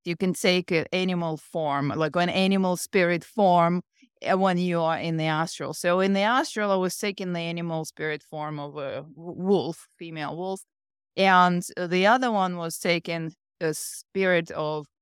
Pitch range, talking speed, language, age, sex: 165-200 Hz, 170 wpm, English, 30-49, female